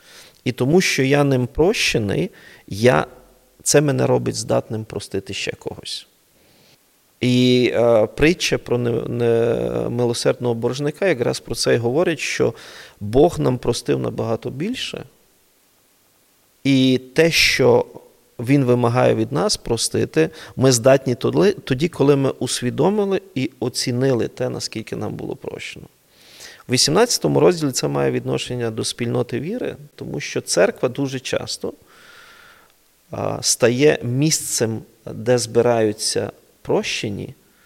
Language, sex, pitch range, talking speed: Ukrainian, male, 115-145 Hz, 115 wpm